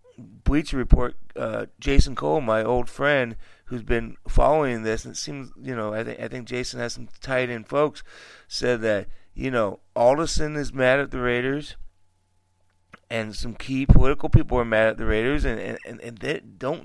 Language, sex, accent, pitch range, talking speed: English, male, American, 105-145 Hz, 185 wpm